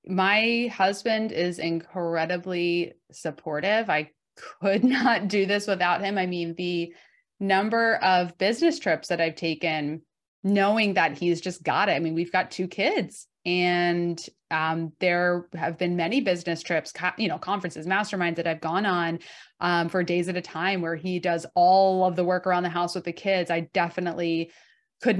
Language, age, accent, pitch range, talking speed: English, 20-39, American, 170-195 Hz, 170 wpm